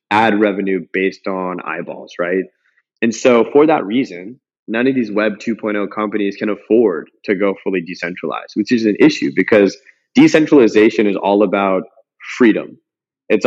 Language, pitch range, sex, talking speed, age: English, 100-120 Hz, male, 150 wpm, 20-39